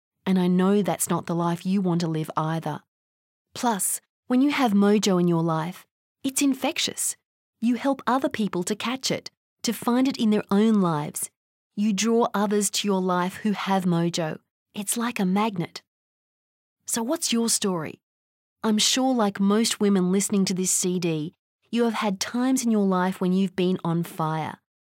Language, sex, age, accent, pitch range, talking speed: English, female, 30-49, Australian, 175-220 Hz, 180 wpm